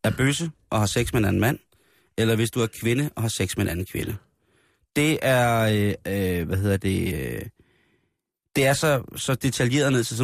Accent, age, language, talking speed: native, 30-49, Danish, 200 wpm